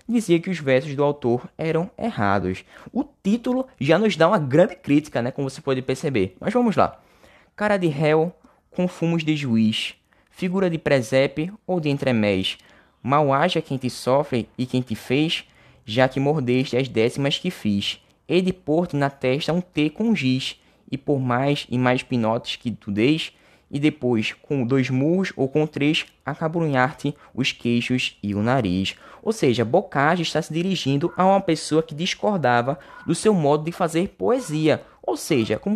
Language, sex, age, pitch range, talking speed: Portuguese, male, 10-29, 125-170 Hz, 180 wpm